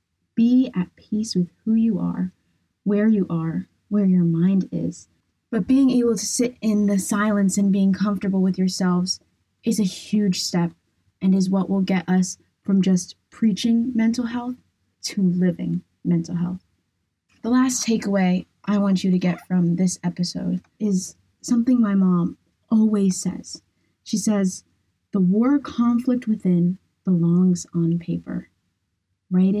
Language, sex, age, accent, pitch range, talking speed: English, female, 20-39, American, 175-215 Hz, 150 wpm